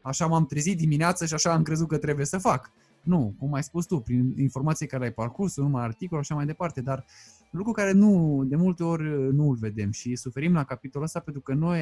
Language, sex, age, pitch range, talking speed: Romanian, male, 20-39, 135-190 Hz, 230 wpm